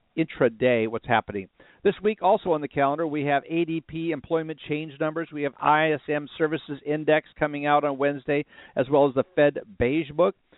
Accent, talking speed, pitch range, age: American, 175 wpm, 130-160 Hz, 50-69